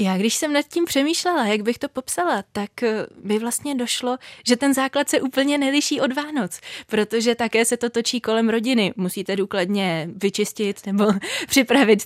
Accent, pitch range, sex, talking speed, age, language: native, 195-235 Hz, female, 170 wpm, 20-39, Czech